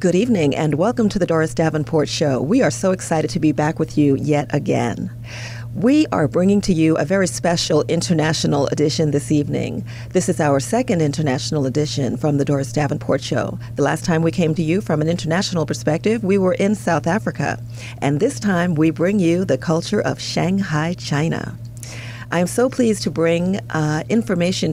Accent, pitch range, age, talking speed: American, 145-195 Hz, 40-59, 190 wpm